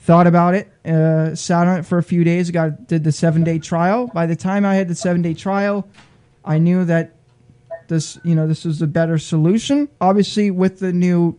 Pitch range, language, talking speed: 155-180 Hz, English, 215 wpm